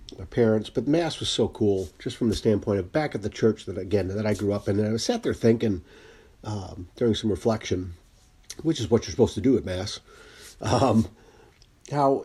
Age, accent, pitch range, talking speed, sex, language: 50-69, American, 95-115 Hz, 210 wpm, male, English